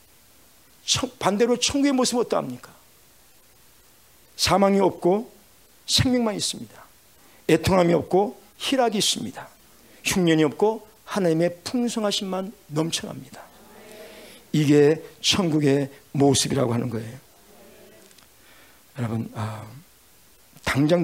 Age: 50-69